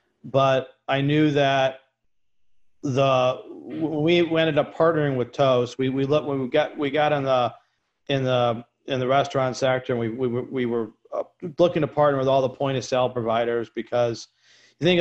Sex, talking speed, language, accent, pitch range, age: male, 185 wpm, English, American, 125-140 Hz, 40-59